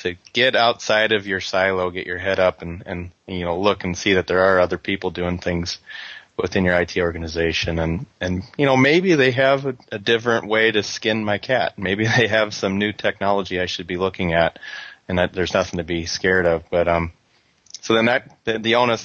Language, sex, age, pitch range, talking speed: English, male, 30-49, 90-105 Hz, 215 wpm